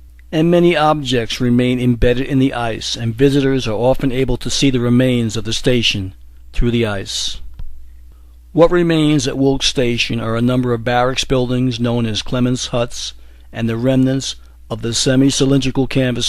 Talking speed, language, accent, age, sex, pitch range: 170 wpm, English, American, 60-79, male, 100-130 Hz